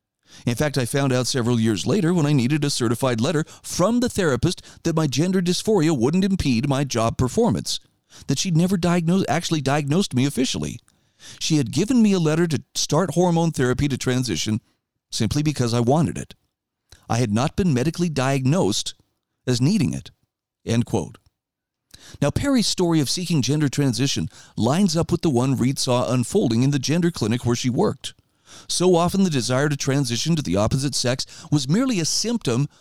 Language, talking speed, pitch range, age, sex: English, 180 wpm, 125-170 Hz, 40-59, male